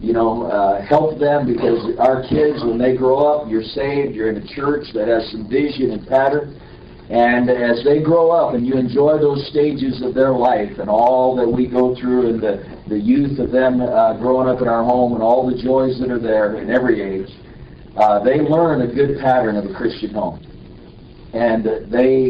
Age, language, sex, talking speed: 50-69, English, male, 205 wpm